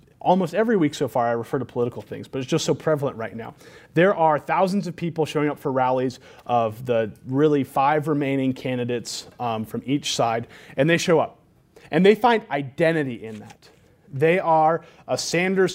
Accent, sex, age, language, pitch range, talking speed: American, male, 30-49, English, 135-200 Hz, 190 wpm